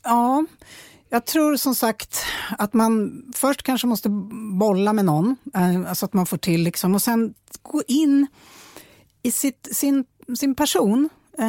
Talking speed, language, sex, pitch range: 135 wpm, English, female, 185-245 Hz